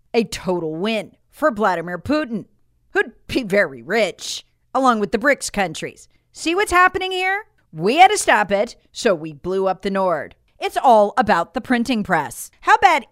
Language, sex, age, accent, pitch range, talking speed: English, female, 40-59, American, 205-300 Hz, 175 wpm